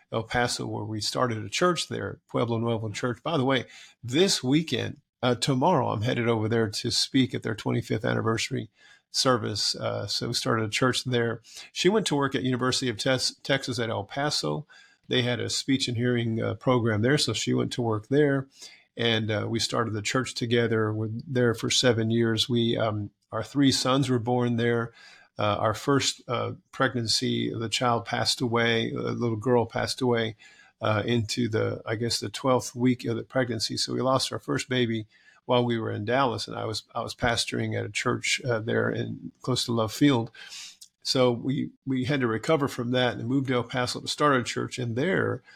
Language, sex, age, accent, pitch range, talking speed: English, male, 50-69, American, 115-130 Hz, 205 wpm